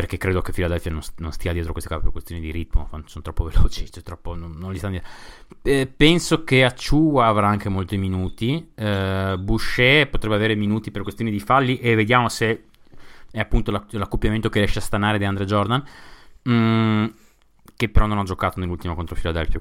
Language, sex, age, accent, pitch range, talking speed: Italian, male, 30-49, native, 90-120 Hz, 190 wpm